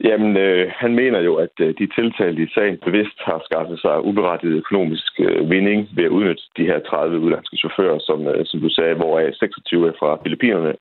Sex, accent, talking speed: male, native, 205 wpm